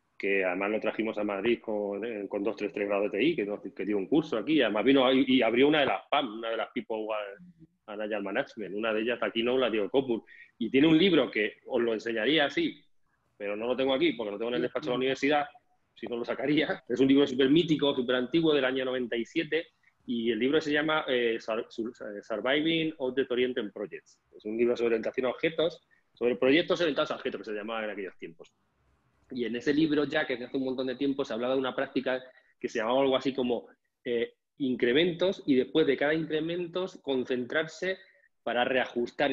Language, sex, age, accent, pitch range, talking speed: Spanish, male, 30-49, Spanish, 115-150 Hz, 215 wpm